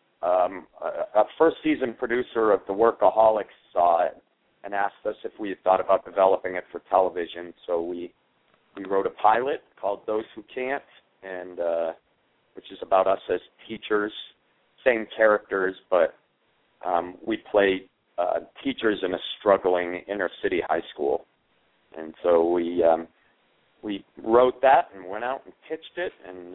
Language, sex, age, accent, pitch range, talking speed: English, male, 40-59, American, 90-115 Hz, 155 wpm